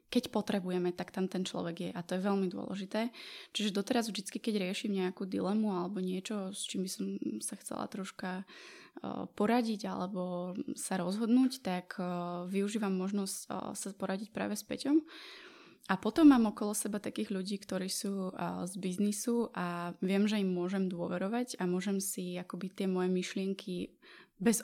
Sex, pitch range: female, 185-215 Hz